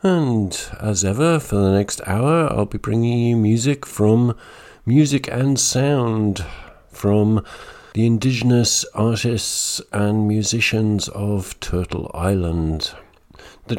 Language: English